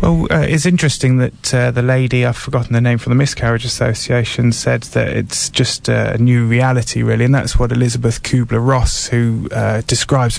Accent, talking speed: British, 190 wpm